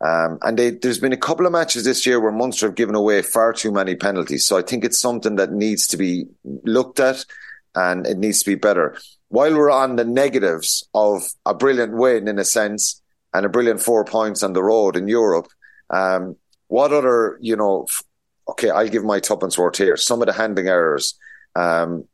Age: 30-49